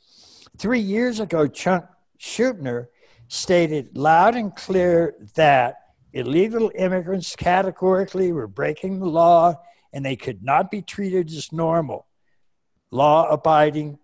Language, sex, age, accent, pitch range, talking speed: English, male, 60-79, American, 140-190 Hz, 110 wpm